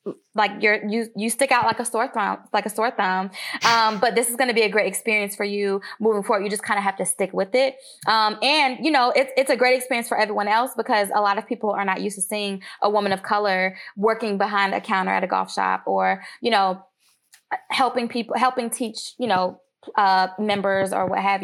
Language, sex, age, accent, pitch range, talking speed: English, female, 20-39, American, 200-240 Hz, 240 wpm